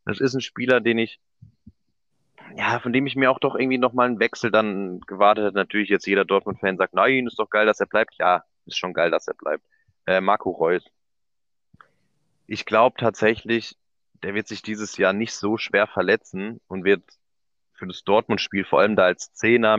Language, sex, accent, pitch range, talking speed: German, male, German, 90-110 Hz, 195 wpm